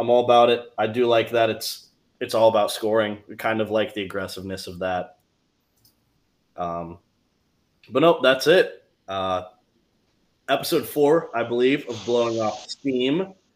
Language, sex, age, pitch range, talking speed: English, male, 20-39, 100-120 Hz, 155 wpm